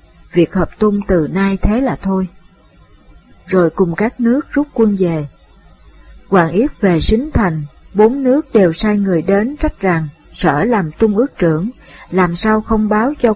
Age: 60-79